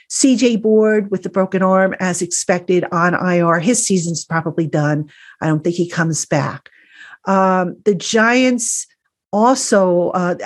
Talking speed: 145 wpm